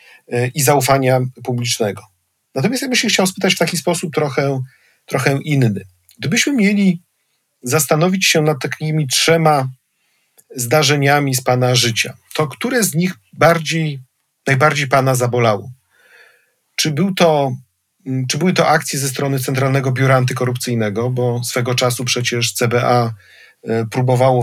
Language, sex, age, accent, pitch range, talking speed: Polish, male, 40-59, native, 120-150 Hz, 120 wpm